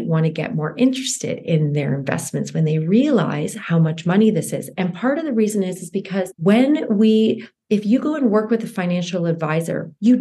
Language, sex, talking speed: English, female, 210 wpm